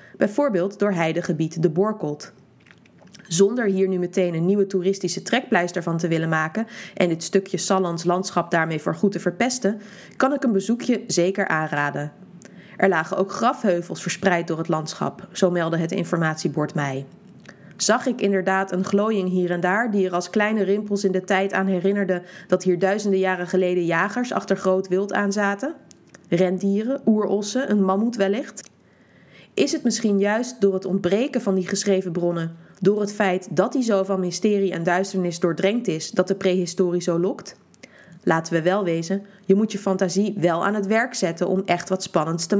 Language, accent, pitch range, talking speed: Dutch, Dutch, 175-200 Hz, 175 wpm